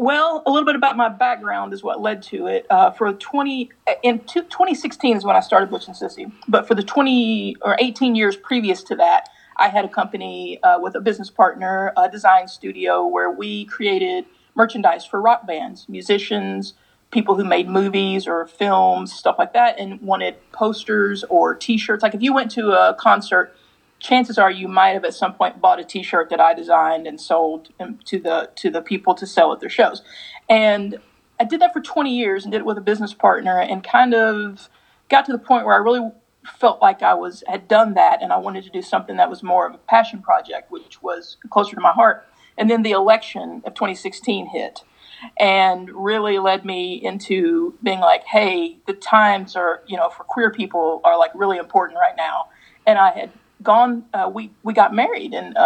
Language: English